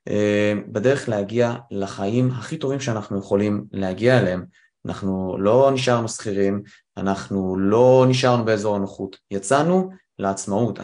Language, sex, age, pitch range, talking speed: Hebrew, male, 20-39, 100-130 Hz, 110 wpm